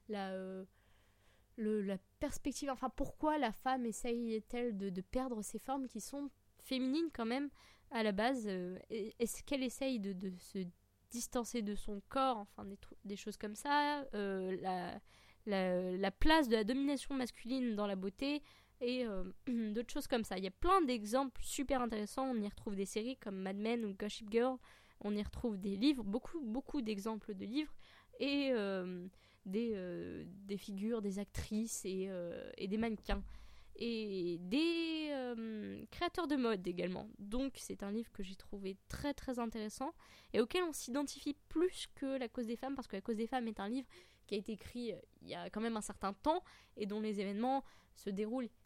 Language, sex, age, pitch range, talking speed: French, female, 20-39, 200-260 Hz, 190 wpm